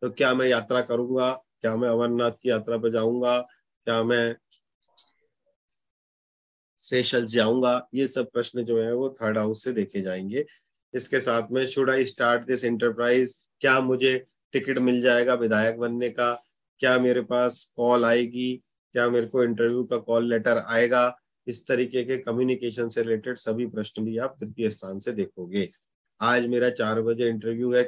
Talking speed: 165 wpm